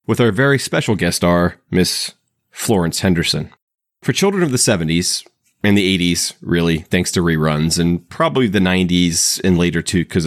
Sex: male